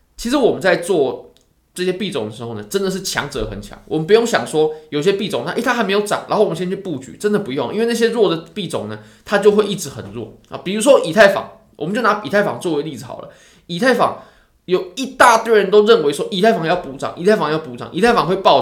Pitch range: 155-225 Hz